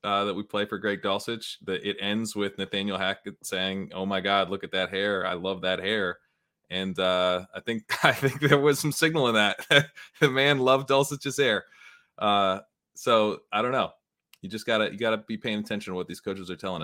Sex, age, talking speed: male, 20-39, 215 wpm